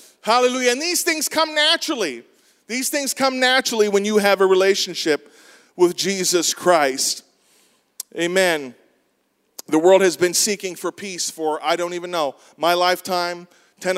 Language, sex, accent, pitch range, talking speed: English, male, American, 155-205 Hz, 145 wpm